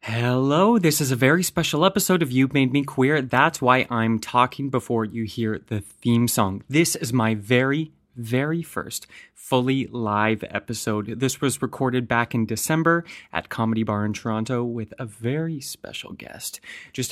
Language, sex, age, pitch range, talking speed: English, male, 30-49, 115-160 Hz, 170 wpm